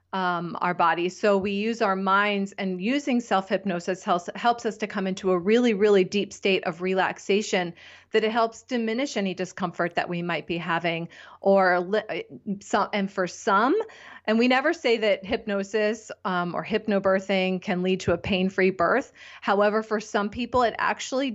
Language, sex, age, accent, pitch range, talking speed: English, female, 30-49, American, 185-220 Hz, 175 wpm